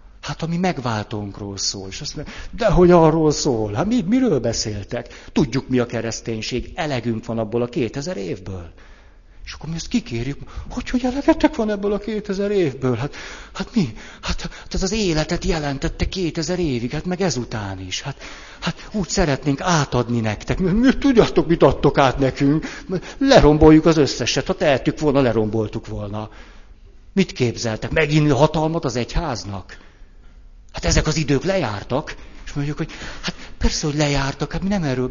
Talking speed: 170 wpm